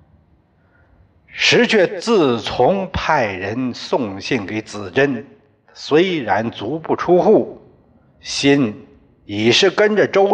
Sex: male